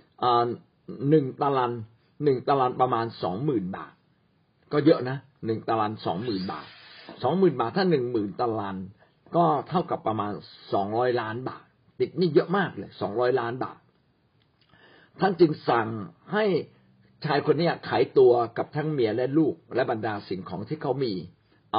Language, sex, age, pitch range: Thai, male, 50-69, 120-175 Hz